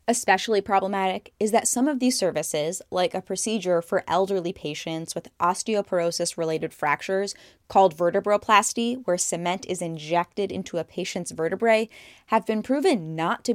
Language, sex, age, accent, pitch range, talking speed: English, female, 10-29, American, 170-215 Hz, 140 wpm